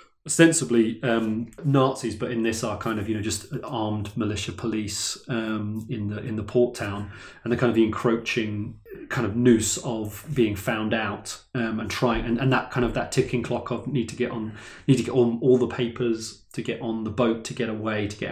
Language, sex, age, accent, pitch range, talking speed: English, male, 30-49, British, 110-130 Hz, 220 wpm